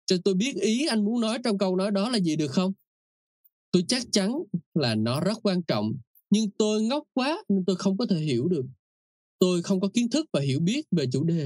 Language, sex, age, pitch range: Vietnamese, male, 20-39, 135-195 Hz